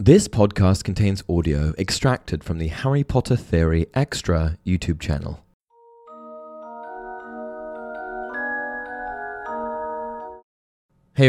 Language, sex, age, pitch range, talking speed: English, male, 20-39, 80-115 Hz, 75 wpm